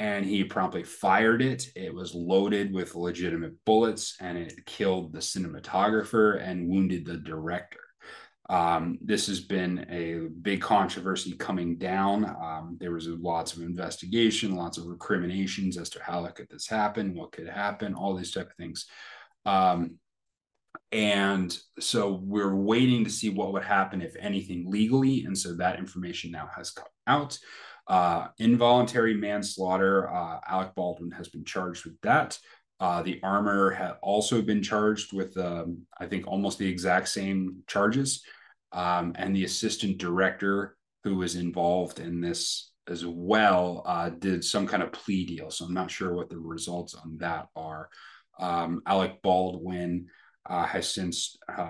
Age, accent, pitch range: 30-49, American, 85-100 Hz